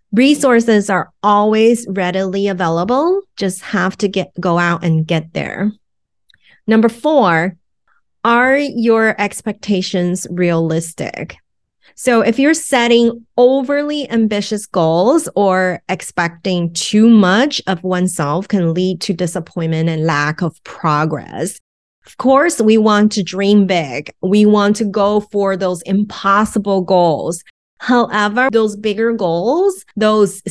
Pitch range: 180-225 Hz